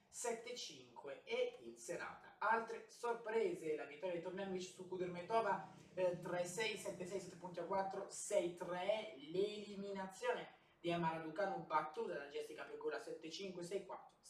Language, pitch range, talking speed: Italian, 165-215 Hz, 95 wpm